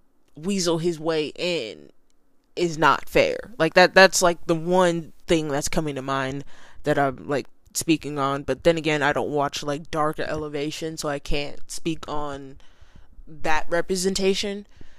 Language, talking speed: English, 155 wpm